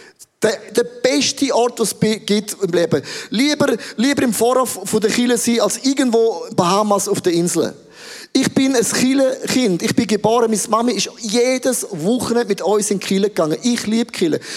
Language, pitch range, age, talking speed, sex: English, 190-235 Hz, 30-49, 180 wpm, male